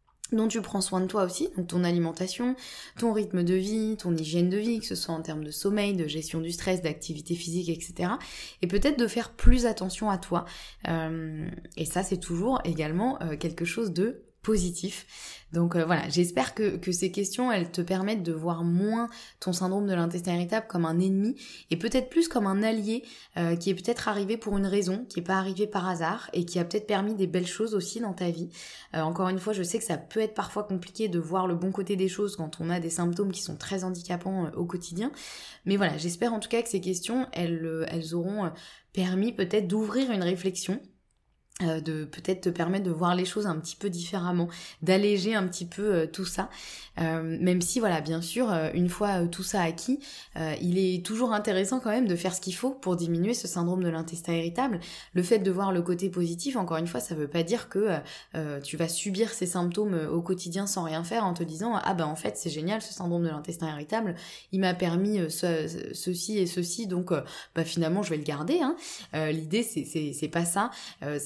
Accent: French